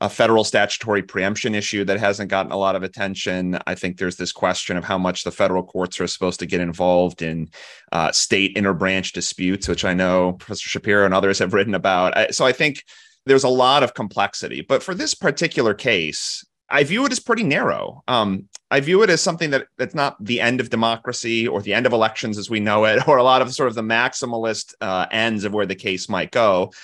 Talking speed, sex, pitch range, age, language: 220 wpm, male, 100-135 Hz, 30-49, English